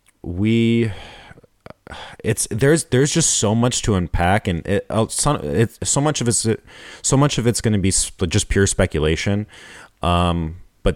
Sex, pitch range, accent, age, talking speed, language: male, 90-115 Hz, American, 30-49, 160 wpm, English